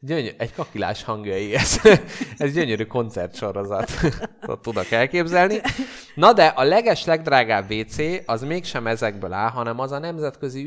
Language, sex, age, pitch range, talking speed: Hungarian, male, 20-39, 100-140 Hz, 135 wpm